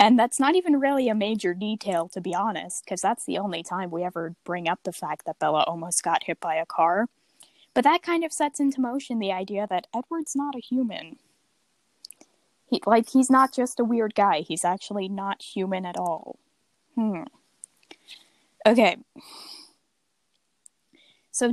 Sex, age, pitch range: female, 10-29, 185-265 Hz